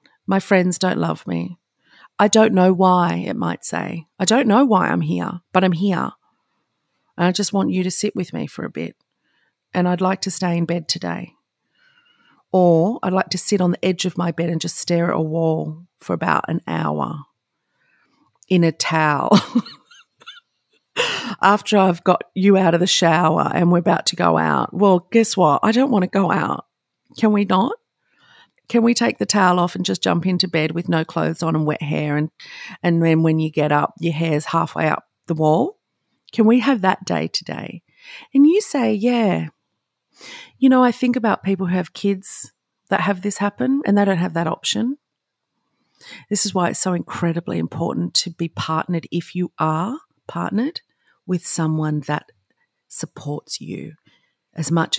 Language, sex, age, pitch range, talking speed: English, female, 40-59, 160-205 Hz, 190 wpm